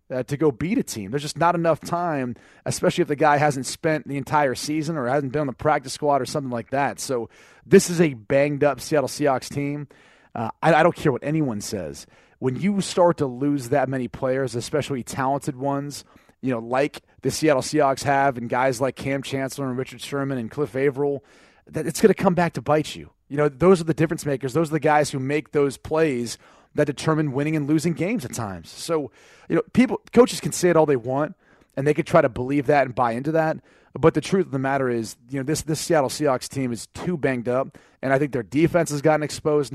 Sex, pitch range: male, 130-155 Hz